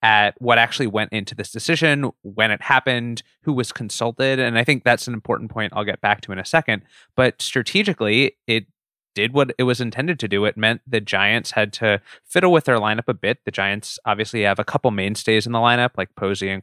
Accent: American